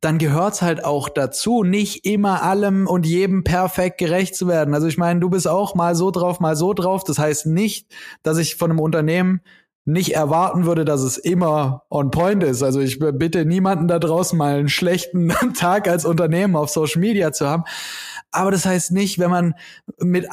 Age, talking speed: 20-39, 200 wpm